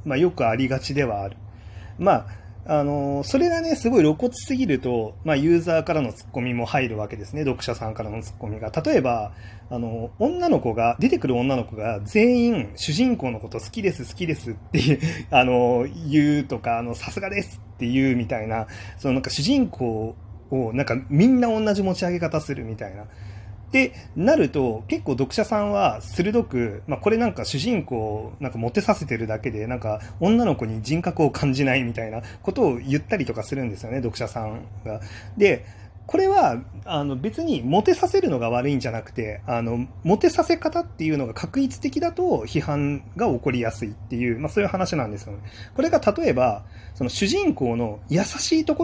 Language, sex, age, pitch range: Japanese, male, 30-49, 110-165 Hz